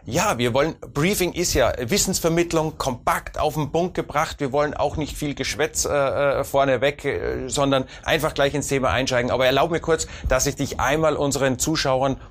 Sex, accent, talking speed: male, German, 180 wpm